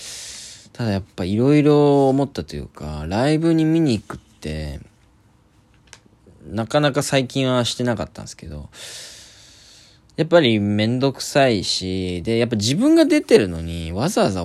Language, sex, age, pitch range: Japanese, male, 20-39, 90-145 Hz